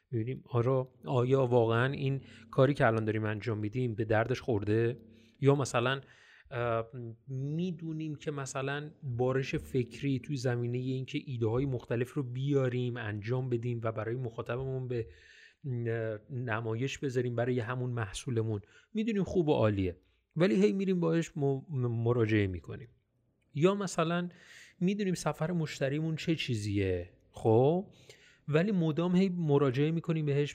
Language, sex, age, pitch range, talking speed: Persian, male, 30-49, 120-155 Hz, 120 wpm